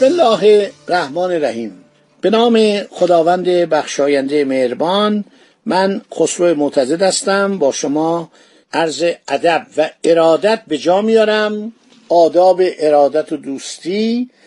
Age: 50-69